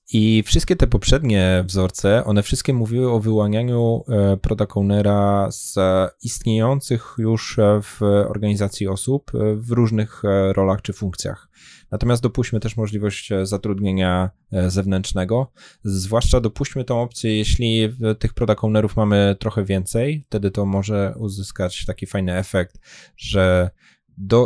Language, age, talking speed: Polish, 20-39, 115 wpm